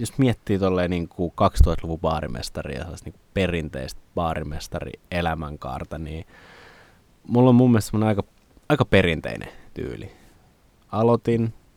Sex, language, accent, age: male, Finnish, native, 20-39